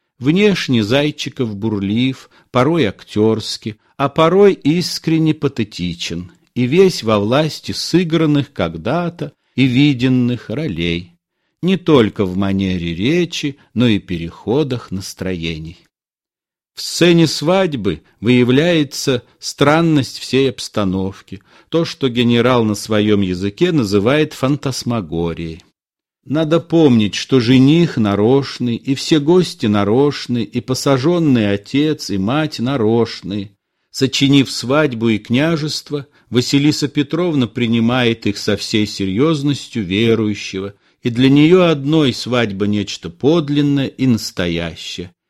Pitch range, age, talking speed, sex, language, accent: 105-150 Hz, 50-69, 105 wpm, male, Russian, native